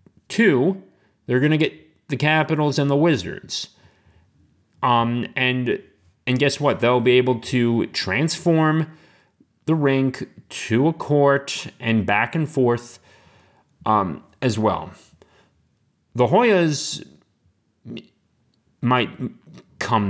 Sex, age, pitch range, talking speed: male, 30-49, 115-150 Hz, 105 wpm